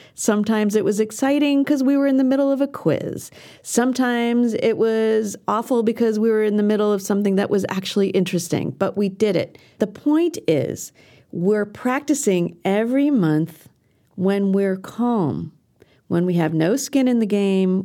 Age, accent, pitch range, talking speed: 40-59, American, 175-235 Hz, 170 wpm